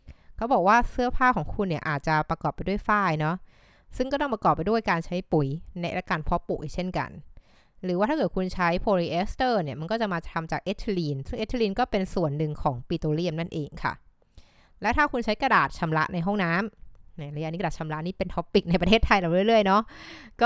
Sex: female